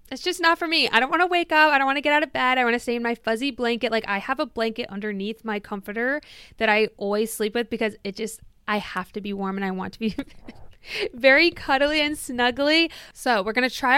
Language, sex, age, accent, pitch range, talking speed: English, female, 20-39, American, 210-255 Hz, 265 wpm